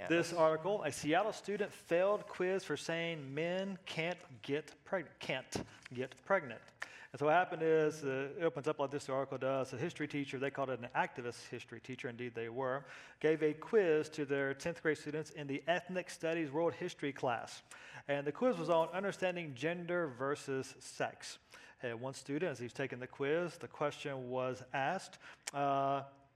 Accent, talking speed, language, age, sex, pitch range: American, 180 wpm, English, 40-59, male, 130-160 Hz